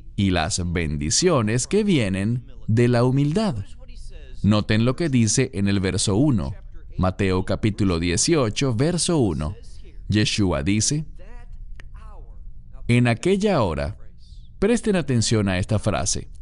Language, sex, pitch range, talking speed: English, male, 80-120 Hz, 115 wpm